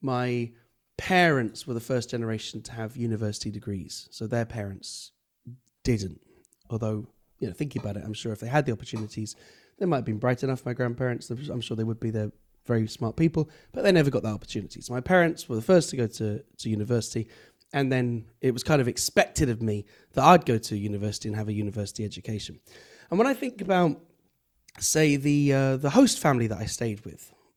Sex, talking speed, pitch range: male, 205 wpm, 110-150 Hz